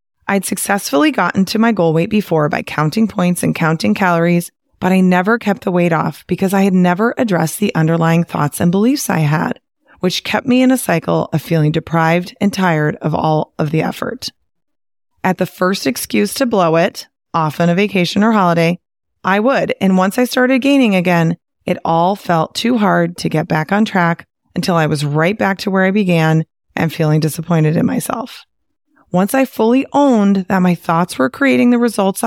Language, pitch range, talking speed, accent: English, 170-220 Hz, 195 wpm, American